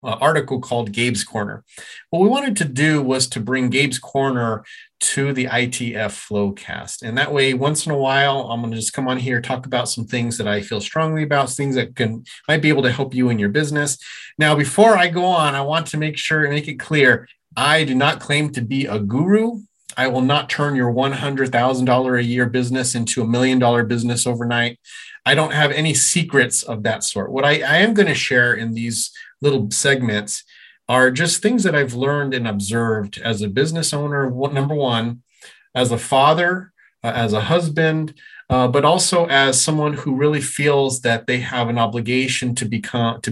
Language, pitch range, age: English, 115-145 Hz, 30-49